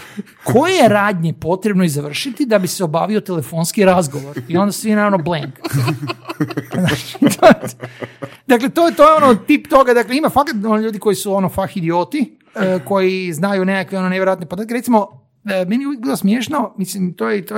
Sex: male